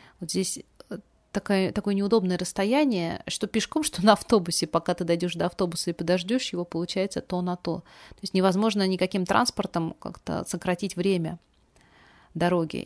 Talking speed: 150 wpm